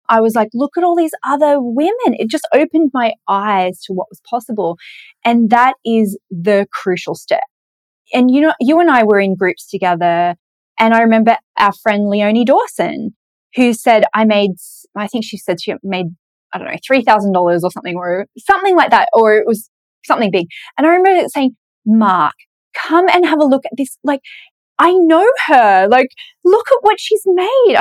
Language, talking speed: English, 195 wpm